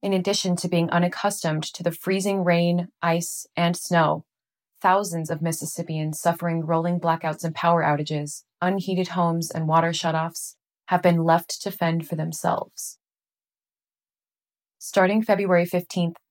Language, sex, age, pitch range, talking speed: English, female, 20-39, 160-180 Hz, 130 wpm